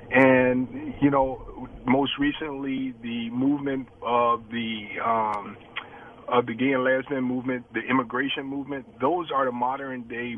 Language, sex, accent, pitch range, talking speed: English, male, American, 125-150 Hz, 140 wpm